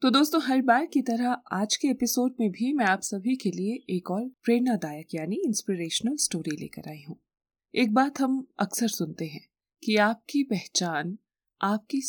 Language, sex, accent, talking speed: Hindi, female, native, 175 wpm